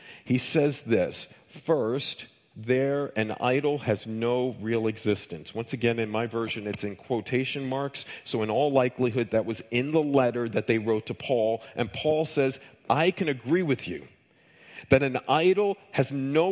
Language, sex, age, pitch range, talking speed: English, male, 50-69, 120-170 Hz, 170 wpm